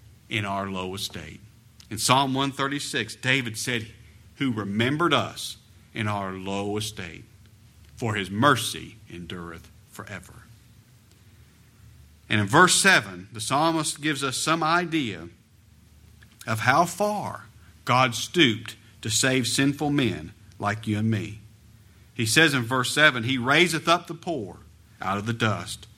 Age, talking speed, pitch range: 50-69, 135 wpm, 105-135 Hz